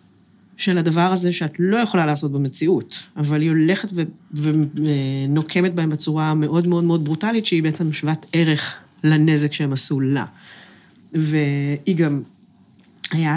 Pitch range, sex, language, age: 150-195 Hz, female, Hebrew, 30-49